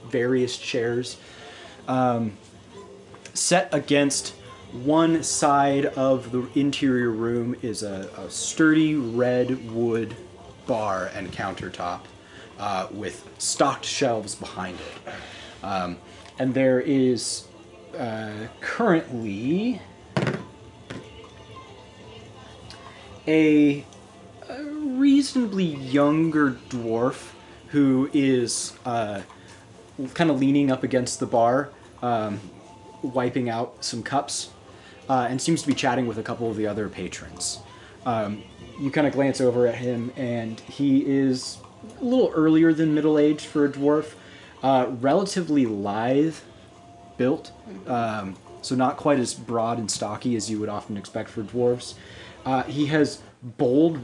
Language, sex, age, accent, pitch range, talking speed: English, male, 30-49, American, 110-140 Hz, 120 wpm